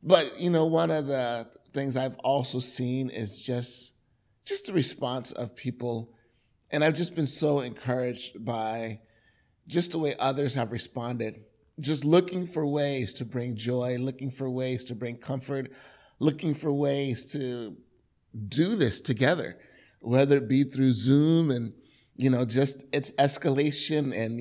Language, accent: English, American